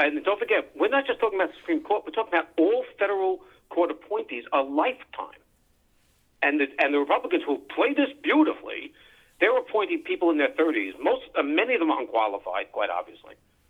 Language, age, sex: English, 50-69, male